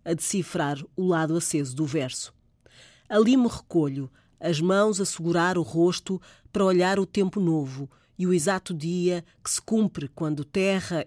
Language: Portuguese